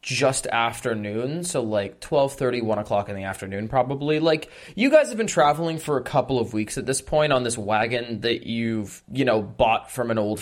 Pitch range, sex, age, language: 115-145 Hz, male, 20-39, English